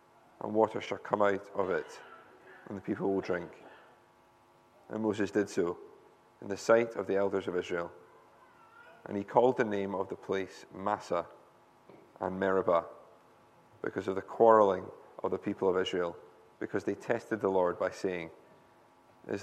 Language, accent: English, British